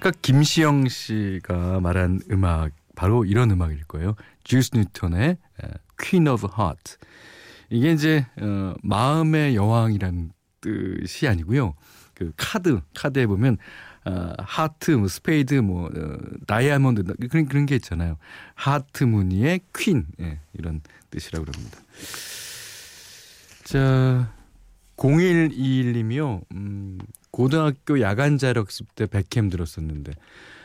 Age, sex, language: 40-59, male, Korean